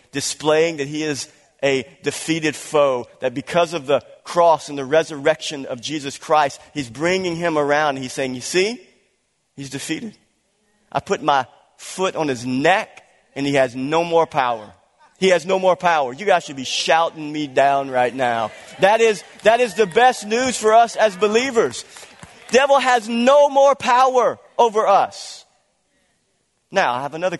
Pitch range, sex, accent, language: 140-190 Hz, male, American, English